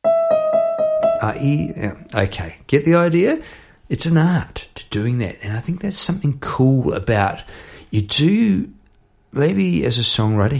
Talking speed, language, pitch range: 135 wpm, English, 110-150 Hz